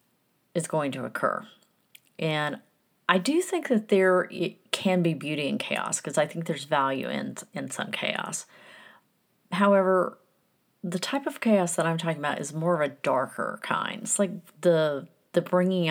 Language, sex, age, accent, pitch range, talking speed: English, female, 40-59, American, 145-185 Hz, 170 wpm